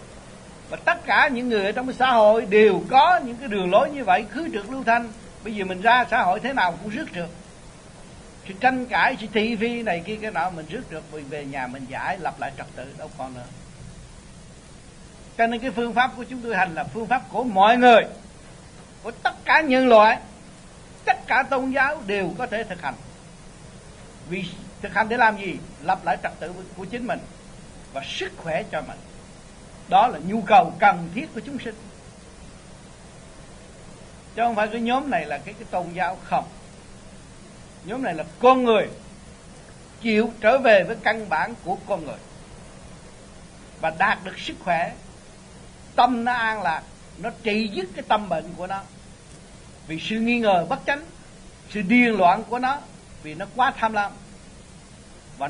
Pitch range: 180-240 Hz